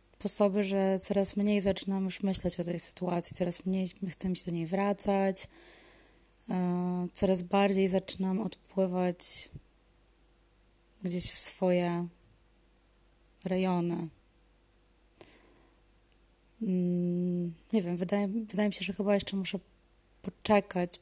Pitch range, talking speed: 175-195 Hz, 105 wpm